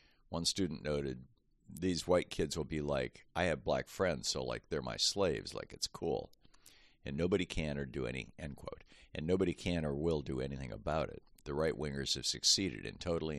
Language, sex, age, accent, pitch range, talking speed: English, male, 50-69, American, 65-80 Hz, 200 wpm